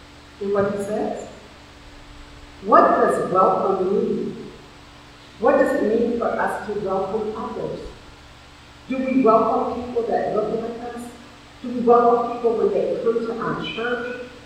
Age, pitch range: 50-69, 195-265 Hz